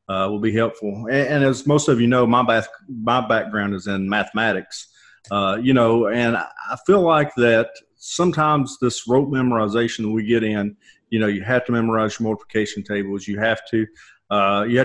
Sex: male